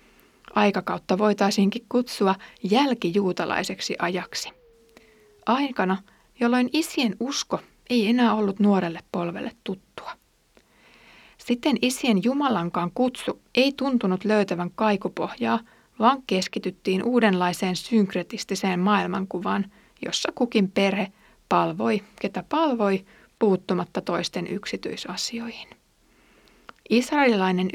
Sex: female